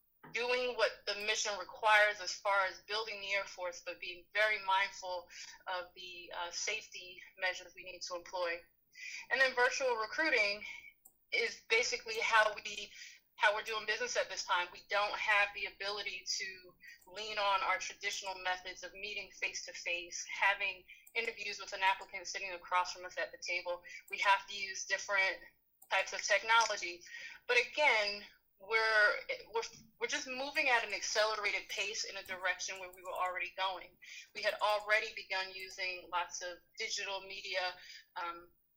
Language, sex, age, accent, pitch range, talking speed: English, female, 20-39, American, 185-220 Hz, 165 wpm